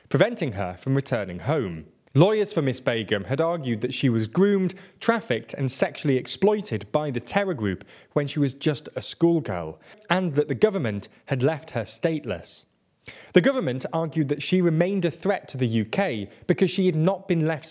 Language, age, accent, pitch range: English, 20-39, British, 120-180 Hz